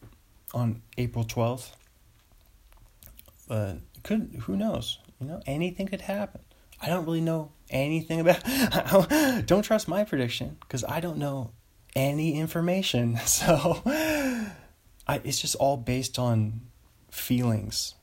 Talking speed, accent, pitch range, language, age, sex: 125 wpm, American, 110-140 Hz, English, 20-39, male